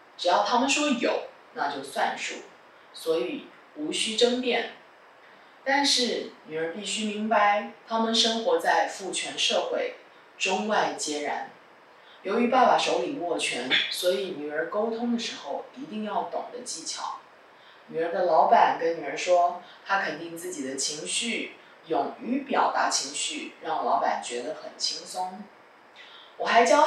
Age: 20-39